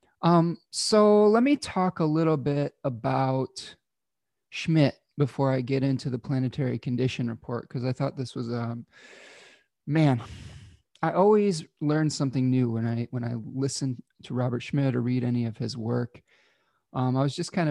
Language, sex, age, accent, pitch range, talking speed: English, male, 30-49, American, 120-150 Hz, 165 wpm